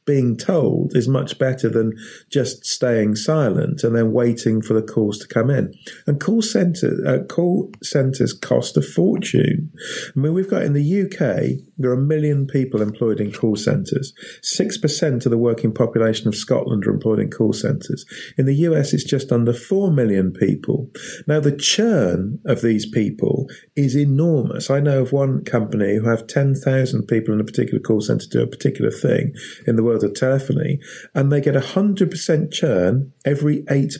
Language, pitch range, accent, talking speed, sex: English, 115-165 Hz, British, 180 wpm, male